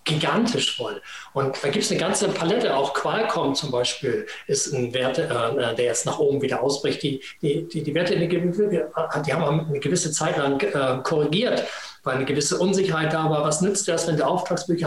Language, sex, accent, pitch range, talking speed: German, male, German, 135-180 Hz, 200 wpm